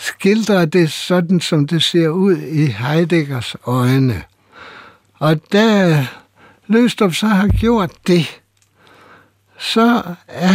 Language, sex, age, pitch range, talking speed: Danish, male, 60-79, 120-175 Hz, 110 wpm